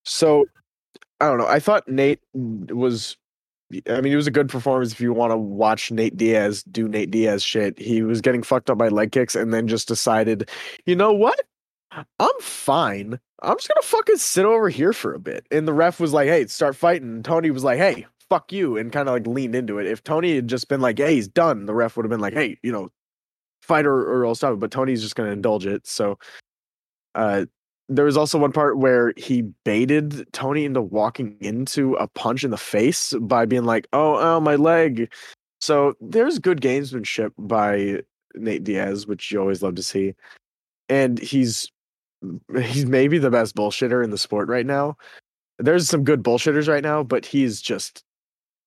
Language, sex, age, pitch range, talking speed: English, male, 20-39, 110-145 Hz, 205 wpm